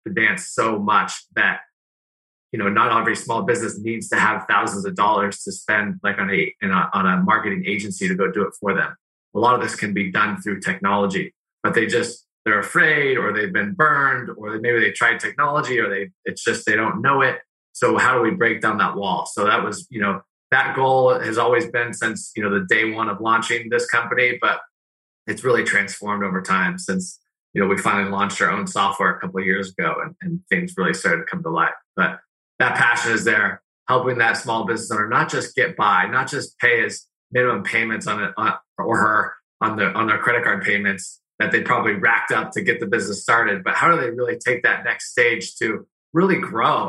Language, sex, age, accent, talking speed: English, male, 20-39, American, 225 wpm